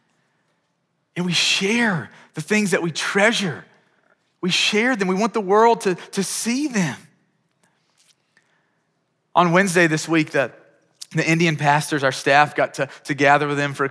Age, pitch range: 30-49, 135-170 Hz